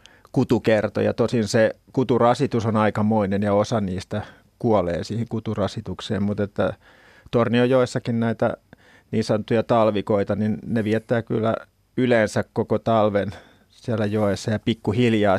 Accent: native